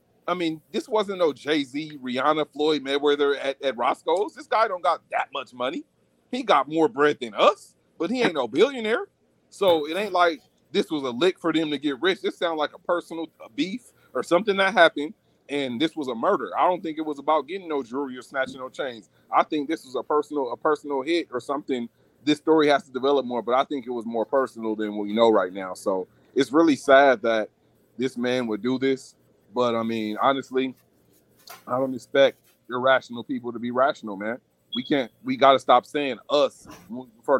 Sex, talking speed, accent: male, 215 wpm, American